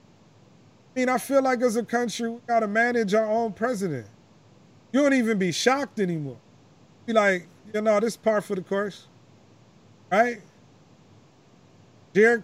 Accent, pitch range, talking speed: American, 200-235 Hz, 160 wpm